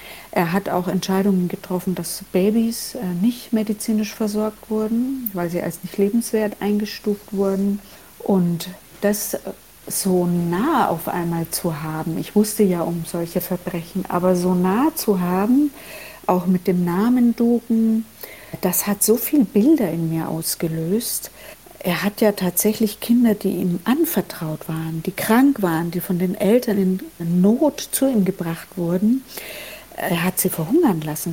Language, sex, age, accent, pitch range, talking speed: German, female, 60-79, German, 175-215 Hz, 150 wpm